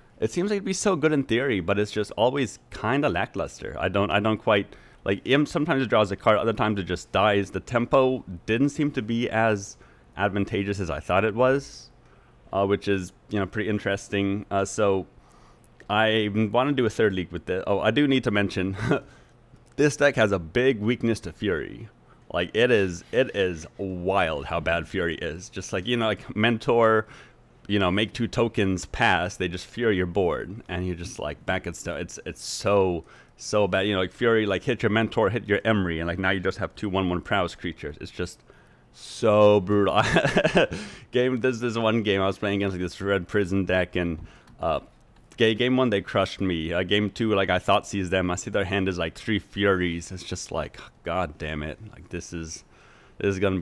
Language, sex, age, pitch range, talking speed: English, male, 30-49, 90-115 Hz, 215 wpm